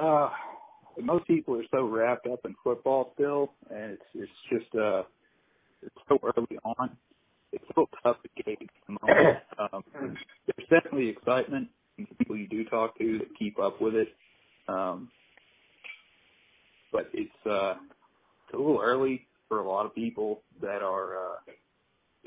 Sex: male